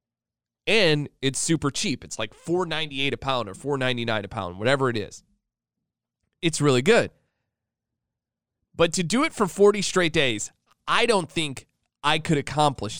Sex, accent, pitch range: male, American, 115-175 Hz